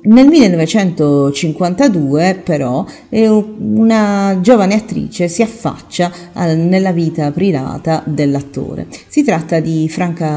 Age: 40-59